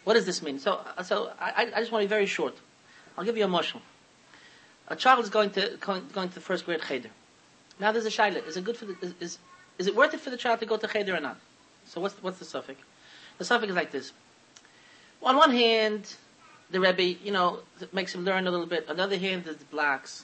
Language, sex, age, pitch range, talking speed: English, male, 30-49, 175-230 Hz, 240 wpm